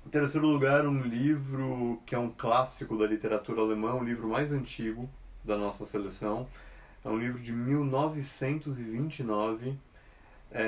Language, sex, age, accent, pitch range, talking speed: Portuguese, male, 30-49, Brazilian, 110-140 Hz, 140 wpm